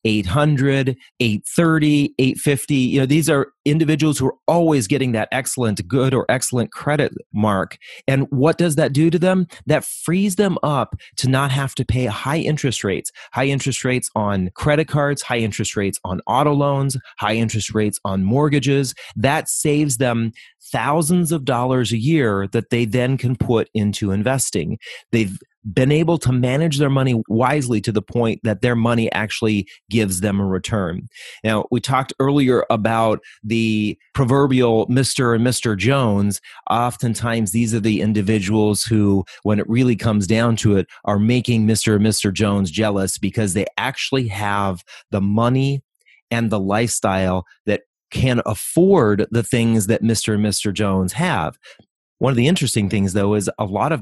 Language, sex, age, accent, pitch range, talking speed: English, male, 30-49, American, 105-135 Hz, 165 wpm